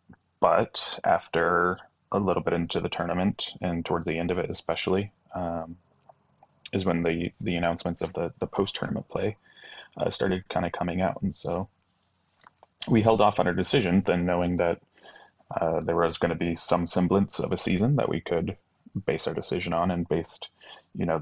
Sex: male